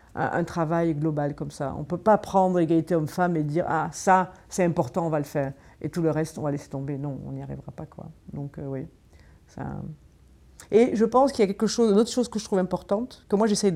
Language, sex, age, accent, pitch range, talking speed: French, female, 50-69, French, 160-210 Hz, 260 wpm